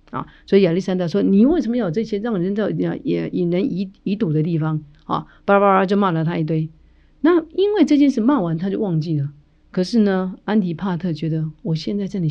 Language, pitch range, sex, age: Chinese, 155-215 Hz, female, 50-69